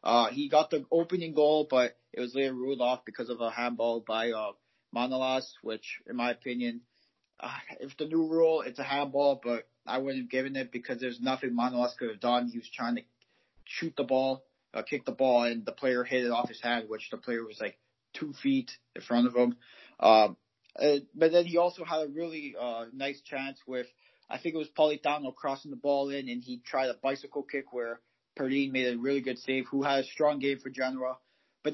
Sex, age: male, 30-49